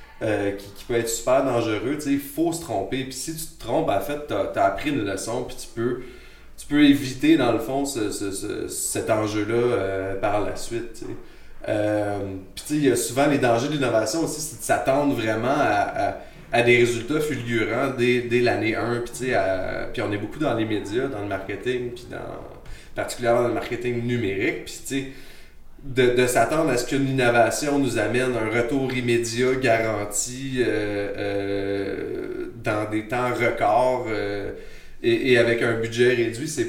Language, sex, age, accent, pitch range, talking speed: French, male, 30-49, Canadian, 110-135 Hz, 185 wpm